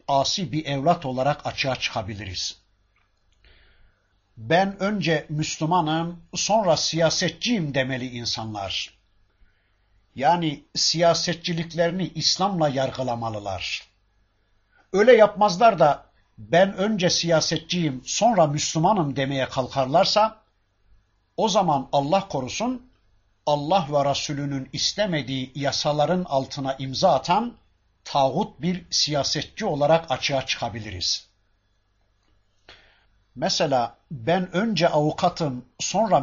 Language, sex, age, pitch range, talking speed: Turkish, male, 60-79, 105-180 Hz, 85 wpm